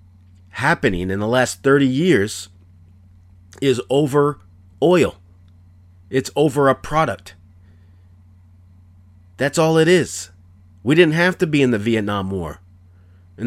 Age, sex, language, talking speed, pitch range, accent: 40-59, male, English, 120 wpm, 90-115 Hz, American